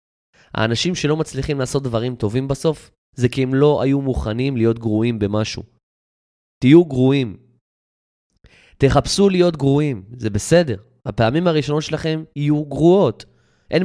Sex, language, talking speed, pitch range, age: male, Hebrew, 125 wpm, 105-150 Hz, 20-39